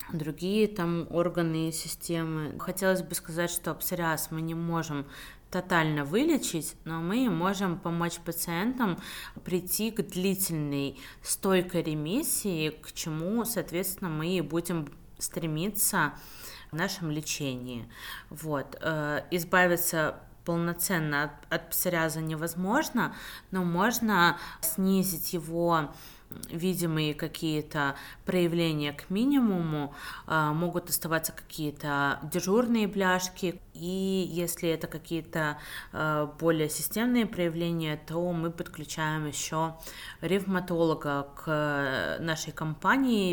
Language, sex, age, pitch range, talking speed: Russian, female, 20-39, 155-180 Hz, 95 wpm